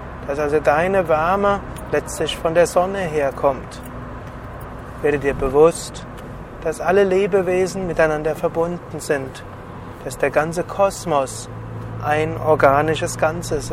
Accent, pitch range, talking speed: German, 135-175 Hz, 110 wpm